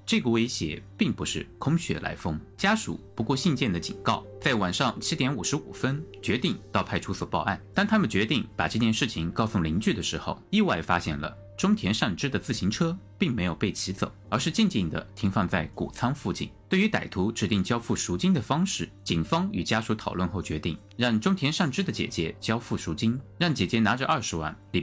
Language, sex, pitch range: Chinese, male, 95-125 Hz